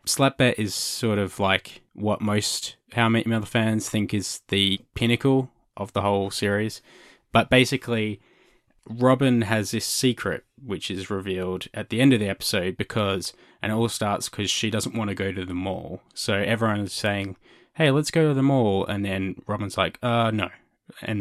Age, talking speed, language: 20-39, 185 wpm, English